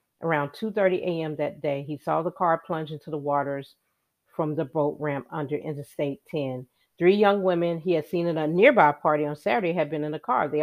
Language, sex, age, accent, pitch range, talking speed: English, female, 40-59, American, 150-185 Hz, 215 wpm